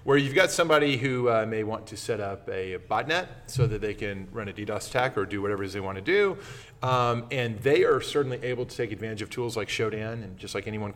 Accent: American